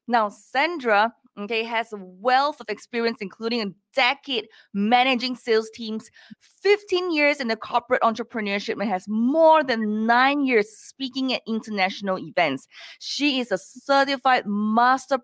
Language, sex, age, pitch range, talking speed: English, female, 20-39, 220-275 Hz, 135 wpm